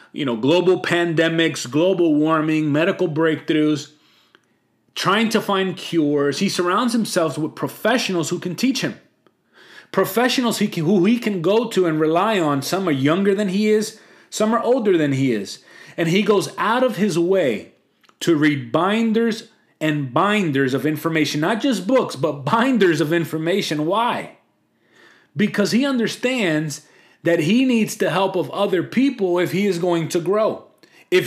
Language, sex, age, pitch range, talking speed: English, male, 30-49, 155-200 Hz, 160 wpm